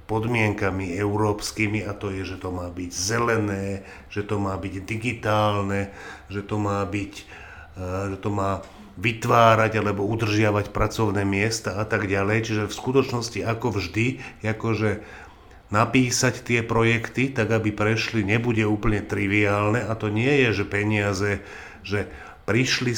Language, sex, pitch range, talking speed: Slovak, male, 105-115 Hz, 140 wpm